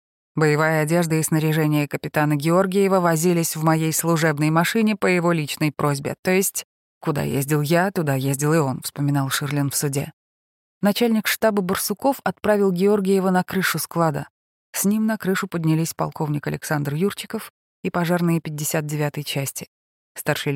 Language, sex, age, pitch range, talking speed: Russian, female, 20-39, 145-180 Hz, 145 wpm